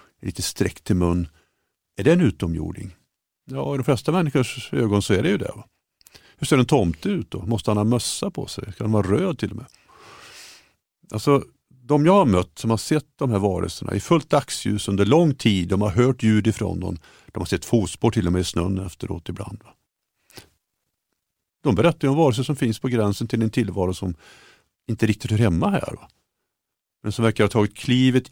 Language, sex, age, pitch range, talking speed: Swedish, male, 50-69, 90-120 Hz, 210 wpm